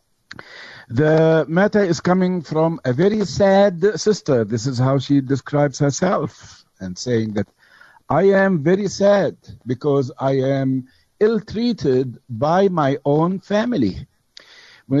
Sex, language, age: male, English, 60-79